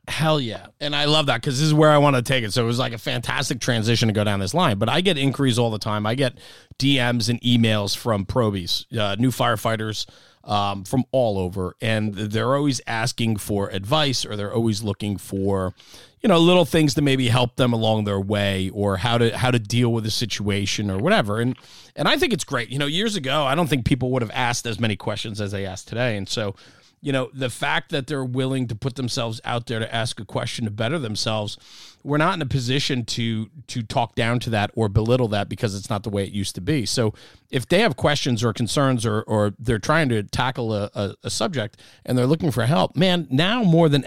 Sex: male